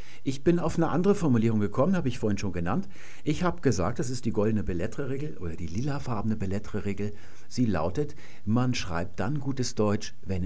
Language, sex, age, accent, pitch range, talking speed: German, male, 50-69, German, 105-130 Hz, 195 wpm